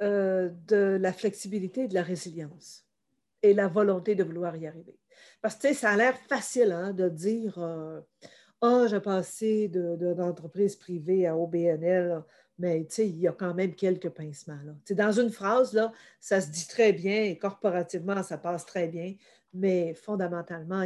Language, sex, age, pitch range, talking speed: French, female, 50-69, 175-205 Hz, 175 wpm